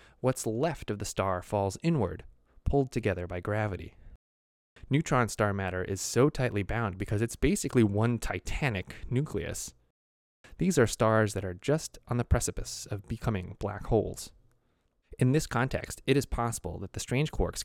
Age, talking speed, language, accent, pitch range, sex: 20-39, 160 wpm, English, American, 95-130 Hz, male